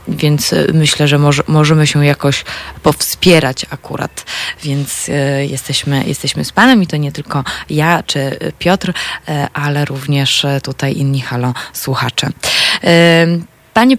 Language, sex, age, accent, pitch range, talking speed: Polish, female, 20-39, native, 145-180 Hz, 115 wpm